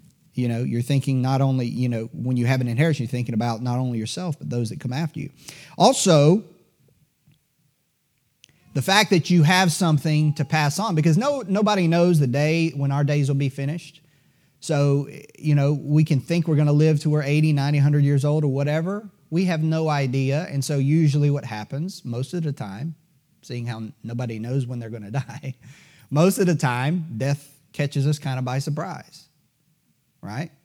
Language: English